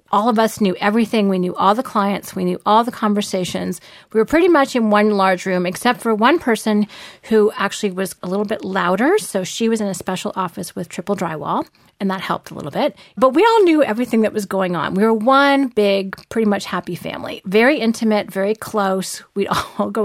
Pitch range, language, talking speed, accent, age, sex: 190-230 Hz, English, 220 wpm, American, 40-59, female